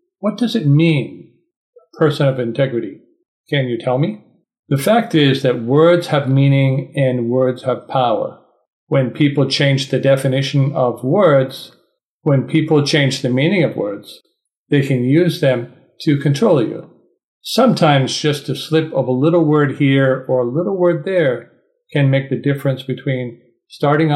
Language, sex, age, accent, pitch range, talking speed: English, male, 50-69, American, 130-155 Hz, 160 wpm